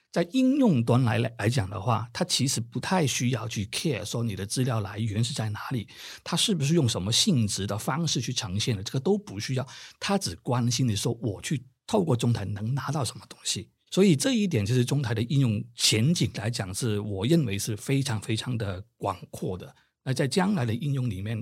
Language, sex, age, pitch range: Chinese, male, 50-69, 110-140 Hz